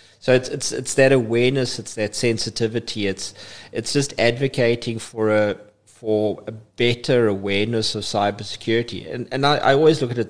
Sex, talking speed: male, 170 wpm